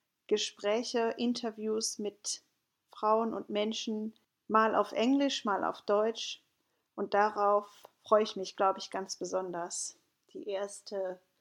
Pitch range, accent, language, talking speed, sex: 185-220 Hz, German, German, 120 wpm, female